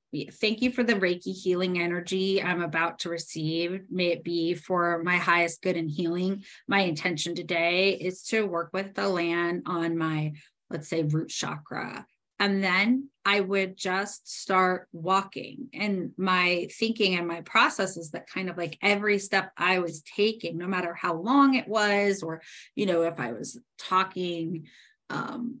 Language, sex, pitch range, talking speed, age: English, female, 170-195 Hz, 165 wpm, 30-49